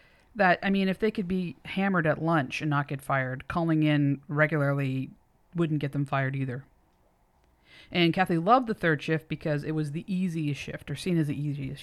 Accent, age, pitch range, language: American, 30-49, 140-170 Hz, English